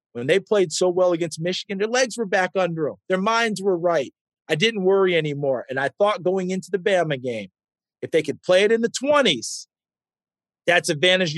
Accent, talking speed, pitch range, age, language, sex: American, 205 wpm, 170-220 Hz, 40-59, English, male